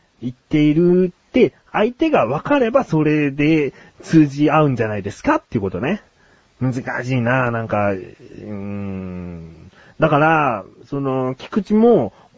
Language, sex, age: Japanese, male, 30-49